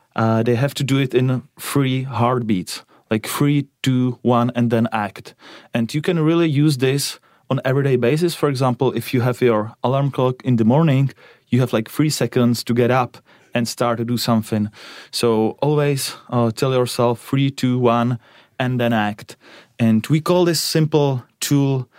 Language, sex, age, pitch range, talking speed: English, male, 30-49, 115-135 Hz, 185 wpm